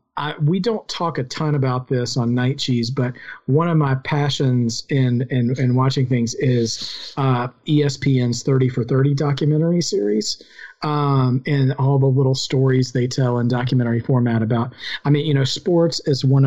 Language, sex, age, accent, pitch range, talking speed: English, male, 40-59, American, 120-140 Hz, 175 wpm